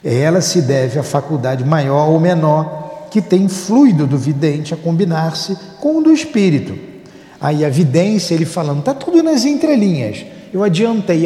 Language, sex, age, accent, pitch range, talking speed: Portuguese, male, 50-69, Brazilian, 155-210 Hz, 160 wpm